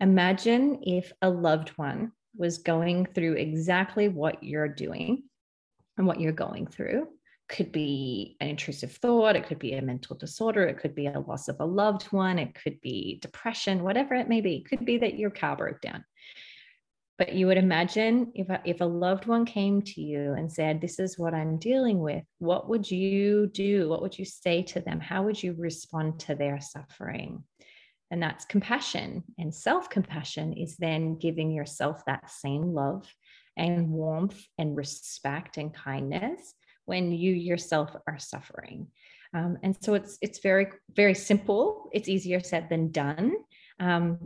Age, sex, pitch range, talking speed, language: 30-49, female, 155-200 Hz, 170 wpm, English